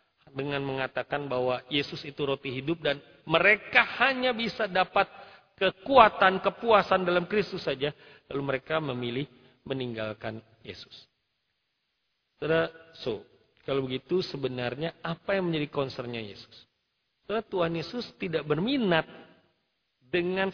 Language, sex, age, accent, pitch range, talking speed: Indonesian, male, 40-59, native, 145-220 Hz, 110 wpm